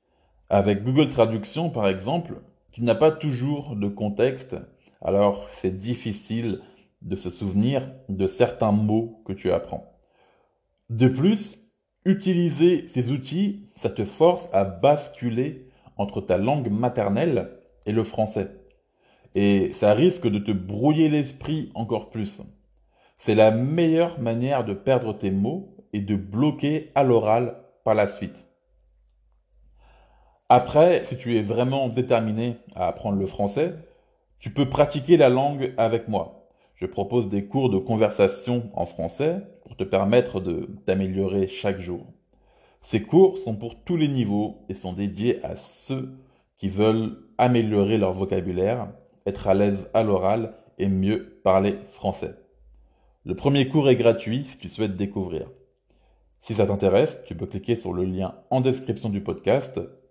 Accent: French